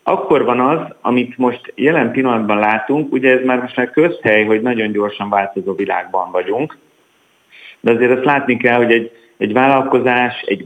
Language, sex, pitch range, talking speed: Hungarian, male, 105-130 Hz, 170 wpm